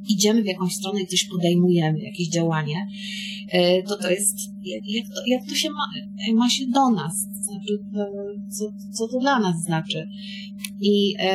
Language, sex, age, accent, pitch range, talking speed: Polish, female, 30-49, native, 190-215 Hz, 150 wpm